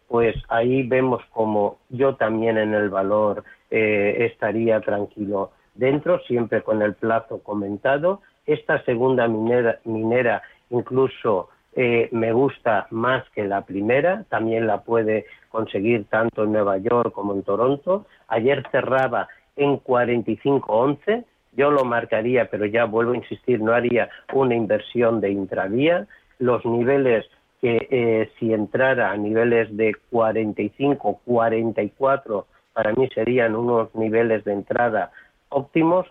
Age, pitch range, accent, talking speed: 50-69, 110-130 Hz, Spanish, 130 wpm